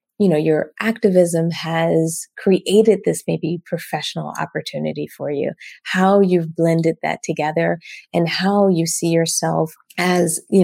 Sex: female